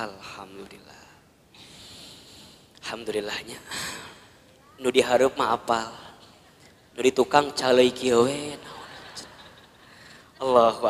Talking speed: 55 wpm